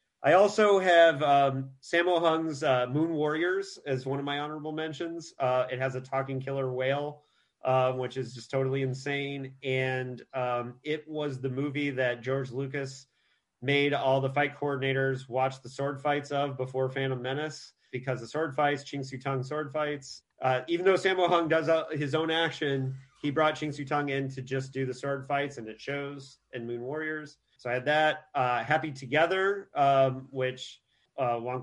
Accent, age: American, 30-49